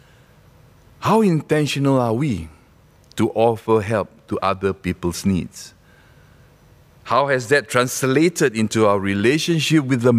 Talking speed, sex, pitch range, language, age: 120 wpm, male, 110-160 Hz, English, 50-69